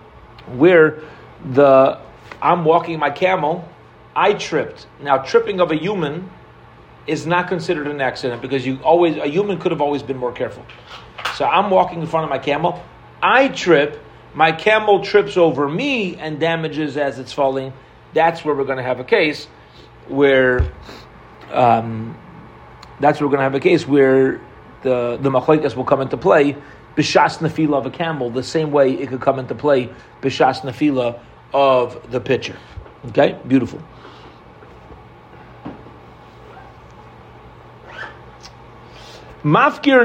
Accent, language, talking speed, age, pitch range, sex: American, English, 145 wpm, 40-59, 125-165 Hz, male